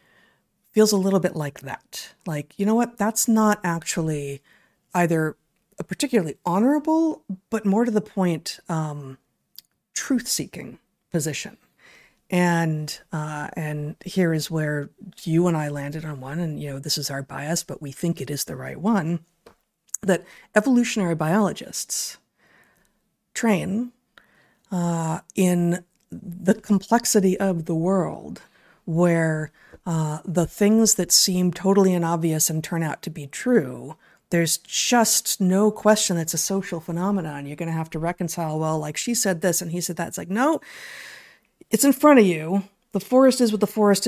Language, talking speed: English, 155 wpm